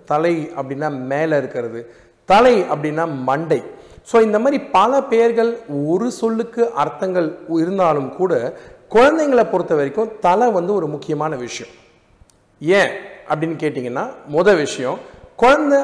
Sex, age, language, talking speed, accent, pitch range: male, 40-59, Tamil, 105 wpm, native, 145-205 Hz